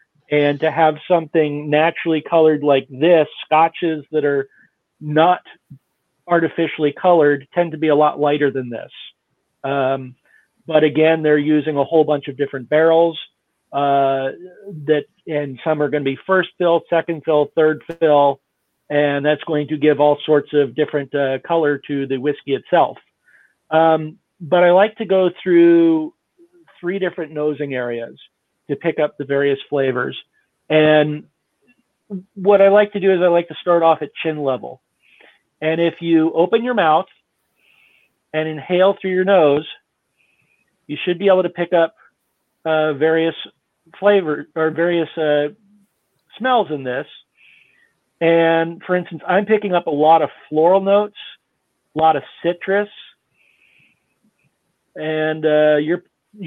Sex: male